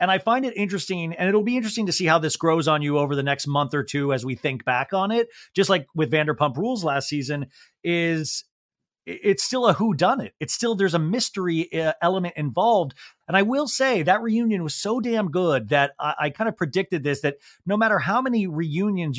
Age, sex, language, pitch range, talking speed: 30-49, male, English, 150-200 Hz, 225 wpm